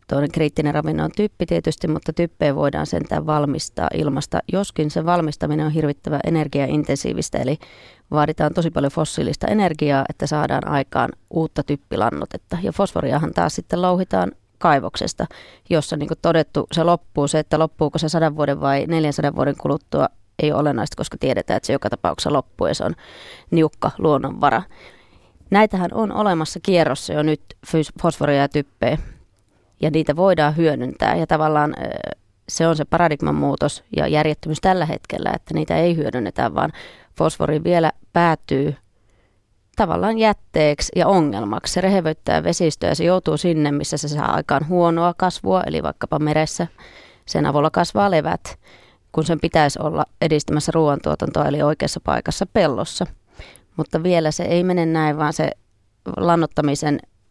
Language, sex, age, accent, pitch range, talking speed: Finnish, female, 30-49, native, 145-170 Hz, 150 wpm